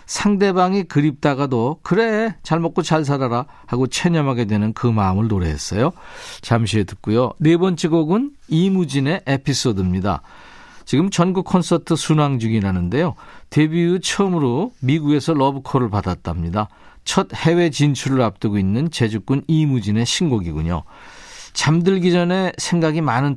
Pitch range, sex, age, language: 115-165 Hz, male, 40-59, Korean